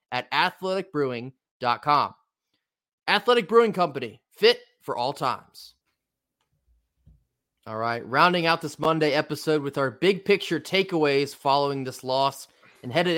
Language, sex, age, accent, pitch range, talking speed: English, male, 20-39, American, 130-165 Hz, 120 wpm